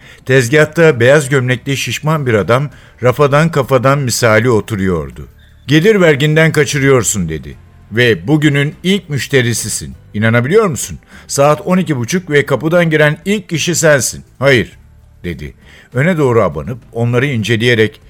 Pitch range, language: 110-160 Hz, Turkish